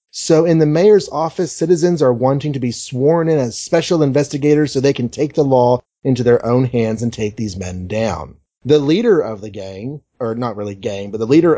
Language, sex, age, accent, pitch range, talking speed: English, male, 30-49, American, 115-150 Hz, 220 wpm